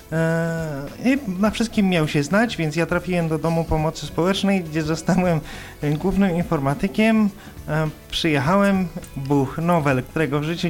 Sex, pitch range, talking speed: male, 150-185 Hz, 130 wpm